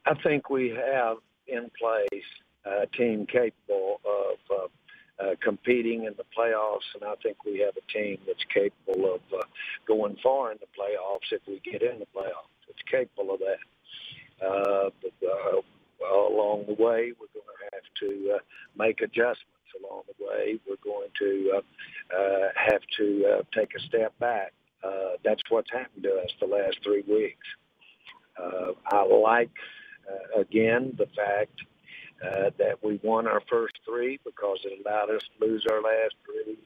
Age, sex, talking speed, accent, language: 60-79, male, 175 wpm, American, English